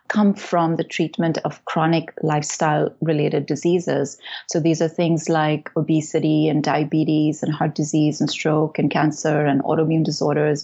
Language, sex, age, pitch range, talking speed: English, female, 30-49, 155-185 Hz, 145 wpm